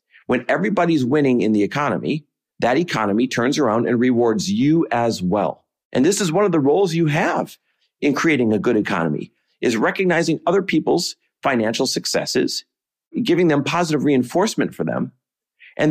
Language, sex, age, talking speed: English, male, 40-59, 160 wpm